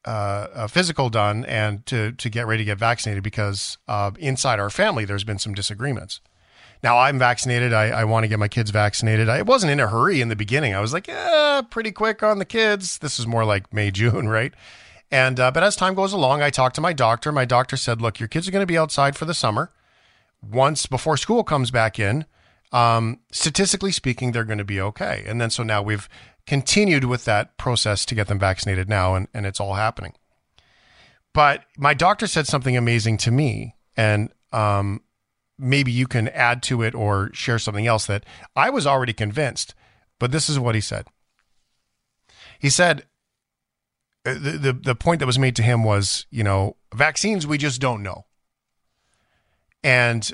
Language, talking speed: English, 200 wpm